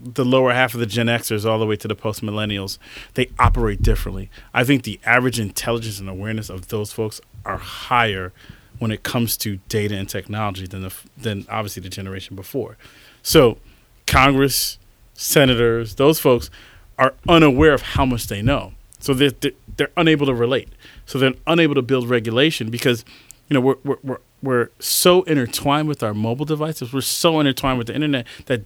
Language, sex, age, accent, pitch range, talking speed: English, male, 30-49, American, 105-135 Hz, 185 wpm